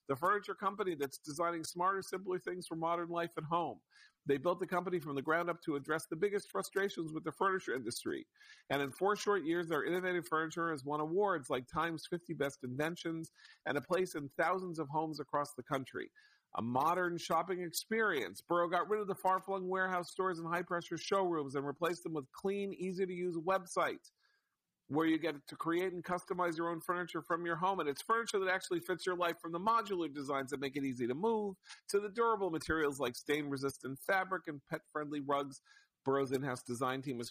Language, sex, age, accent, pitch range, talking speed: English, male, 50-69, American, 140-180 Hz, 200 wpm